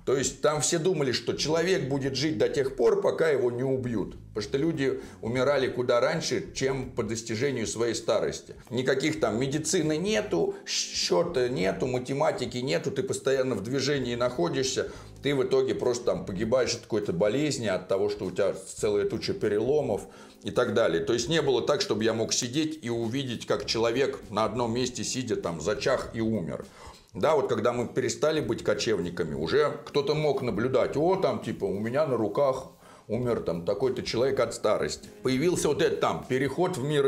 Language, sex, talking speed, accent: Russian, male, 180 wpm, native